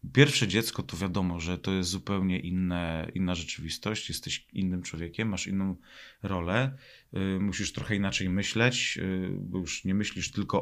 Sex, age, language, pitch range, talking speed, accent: male, 30-49, Polish, 95-115 Hz, 160 wpm, native